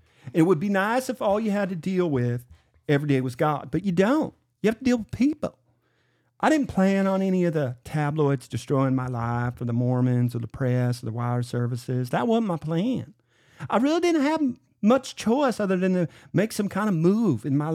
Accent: American